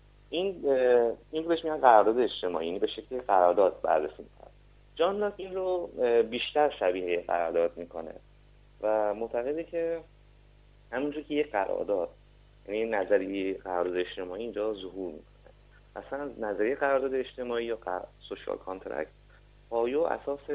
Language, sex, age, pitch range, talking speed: Persian, male, 30-49, 105-145 Hz, 120 wpm